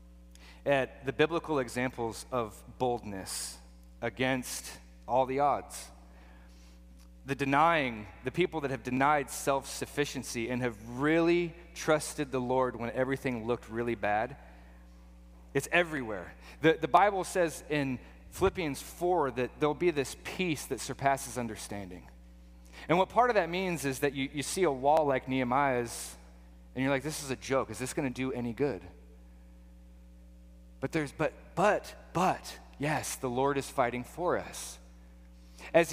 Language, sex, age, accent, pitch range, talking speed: English, male, 30-49, American, 95-155 Hz, 145 wpm